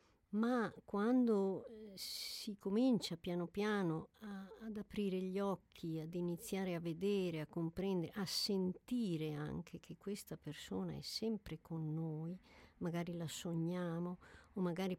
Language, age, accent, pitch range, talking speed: Italian, 50-69, native, 170-215 Hz, 125 wpm